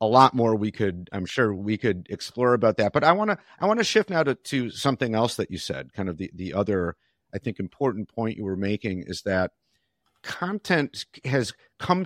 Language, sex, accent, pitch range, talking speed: English, male, American, 100-135 Hz, 215 wpm